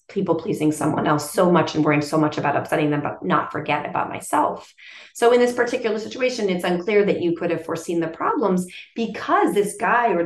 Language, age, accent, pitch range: English, 30-49, American, 165-235 Hz